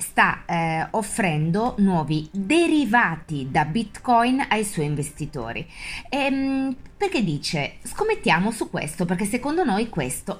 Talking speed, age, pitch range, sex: 115 wpm, 20-39, 150-210 Hz, female